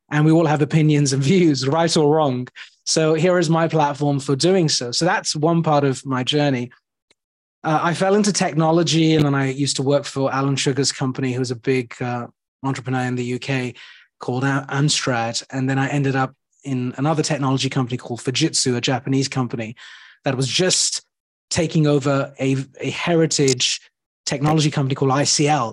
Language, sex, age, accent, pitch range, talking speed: English, male, 30-49, British, 130-155 Hz, 180 wpm